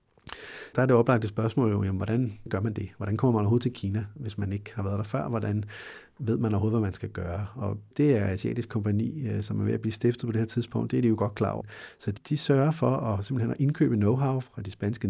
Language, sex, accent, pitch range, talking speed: Danish, male, native, 110-140 Hz, 260 wpm